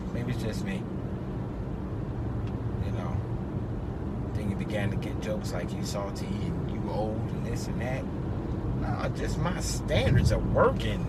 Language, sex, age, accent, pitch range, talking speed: English, male, 30-49, American, 105-135 Hz, 145 wpm